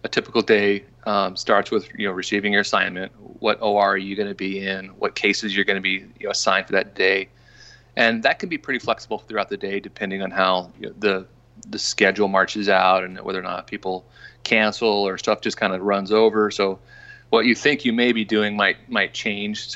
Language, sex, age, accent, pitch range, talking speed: English, male, 30-49, American, 95-110 Hz, 230 wpm